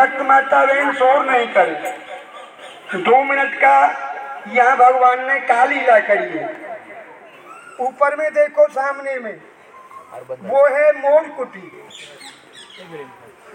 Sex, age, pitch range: male, 50-69, 245-290 Hz